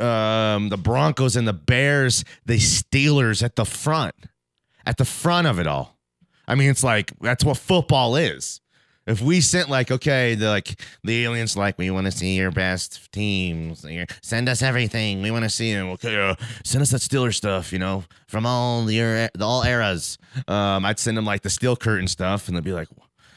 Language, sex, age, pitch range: English, male, 30-49, 95-135 Hz